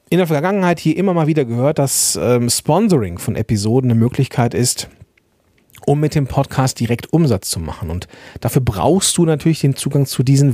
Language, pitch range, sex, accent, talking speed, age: German, 110-155 Hz, male, German, 180 wpm, 40-59